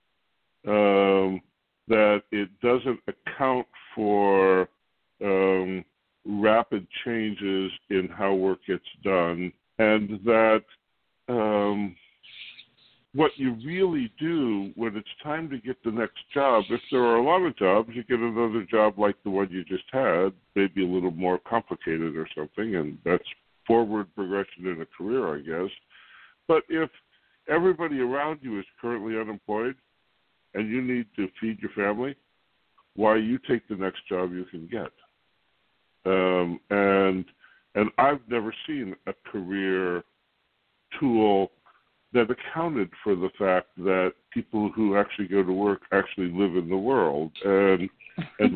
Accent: American